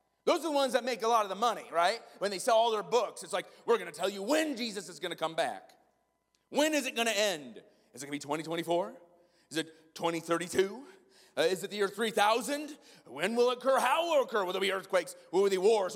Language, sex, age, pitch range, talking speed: English, male, 30-49, 170-250 Hz, 275 wpm